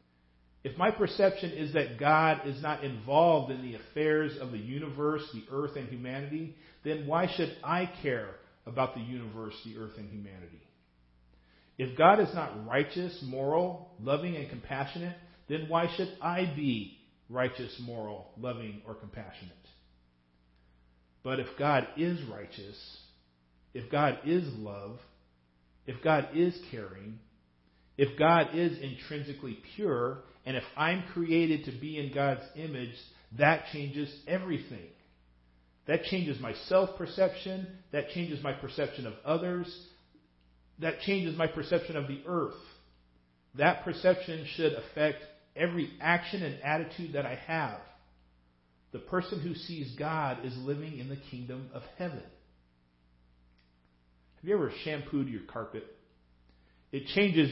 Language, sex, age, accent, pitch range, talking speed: English, male, 50-69, American, 95-160 Hz, 135 wpm